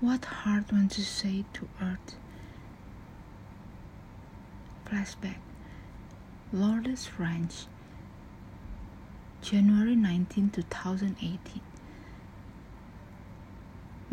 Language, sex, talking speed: English, female, 55 wpm